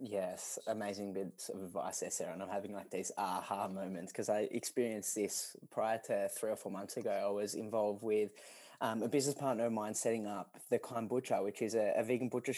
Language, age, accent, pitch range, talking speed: English, 20-39, Australian, 105-125 Hz, 220 wpm